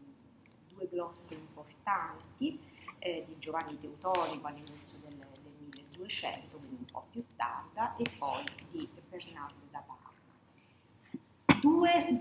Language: Italian